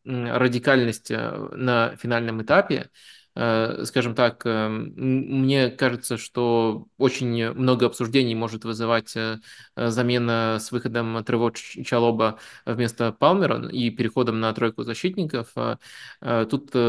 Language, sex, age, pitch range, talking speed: Russian, male, 20-39, 115-130 Hz, 95 wpm